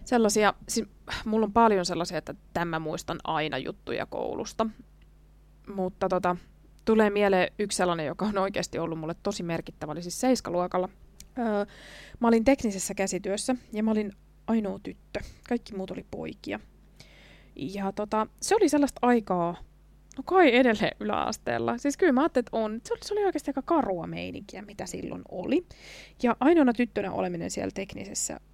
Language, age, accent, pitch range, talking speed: Finnish, 20-39, native, 180-240 Hz, 155 wpm